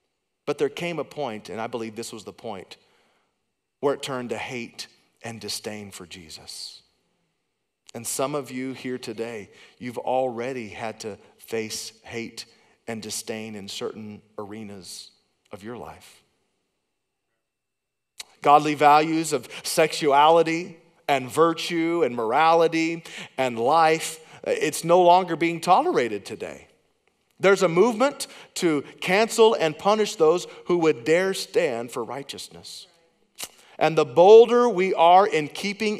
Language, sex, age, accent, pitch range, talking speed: English, male, 40-59, American, 130-200 Hz, 130 wpm